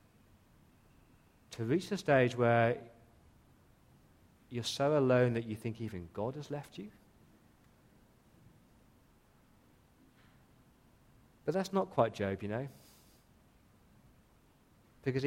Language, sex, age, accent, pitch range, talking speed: English, male, 30-49, British, 110-140 Hz, 95 wpm